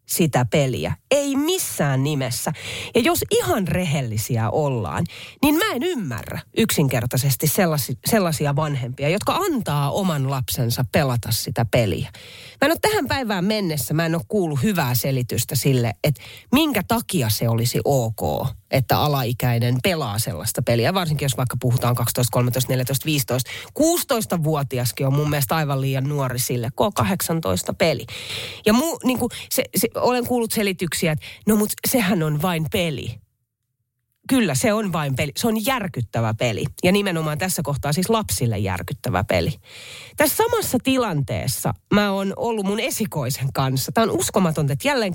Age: 30-49